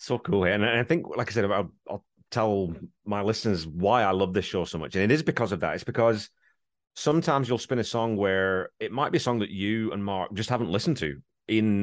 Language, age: English, 30-49